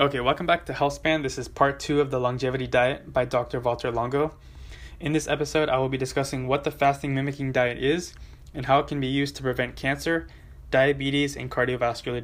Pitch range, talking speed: 120-145 Hz, 205 wpm